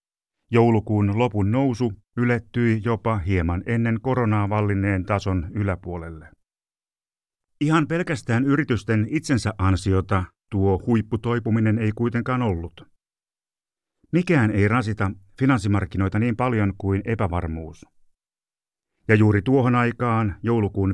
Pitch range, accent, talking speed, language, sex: 95-115 Hz, native, 95 wpm, Finnish, male